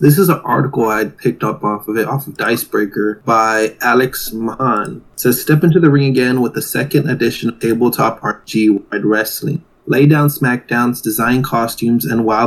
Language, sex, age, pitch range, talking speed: English, male, 20-39, 115-130 Hz, 185 wpm